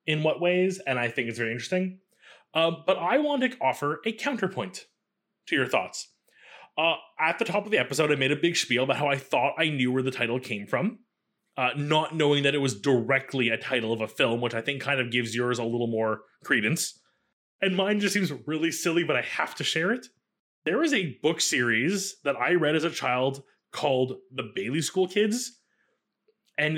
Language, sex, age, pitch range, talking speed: English, male, 20-39, 135-185 Hz, 215 wpm